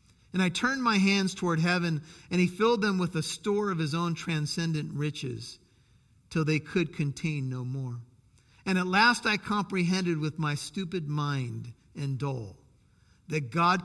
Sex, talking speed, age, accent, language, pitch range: male, 165 wpm, 50-69, American, English, 150-210 Hz